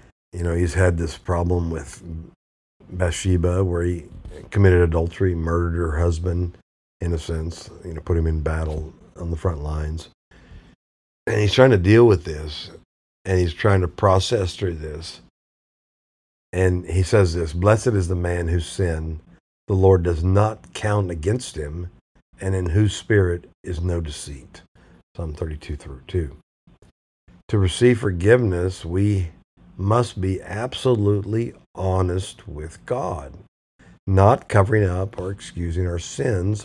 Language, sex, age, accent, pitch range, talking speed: English, male, 50-69, American, 80-95 Hz, 140 wpm